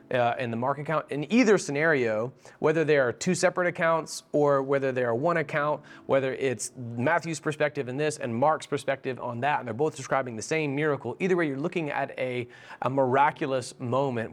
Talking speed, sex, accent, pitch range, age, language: 195 wpm, male, American, 105-145 Hz, 30-49, English